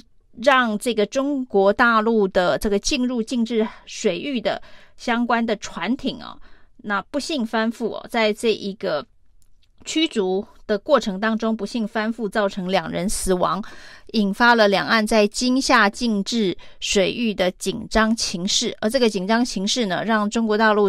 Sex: female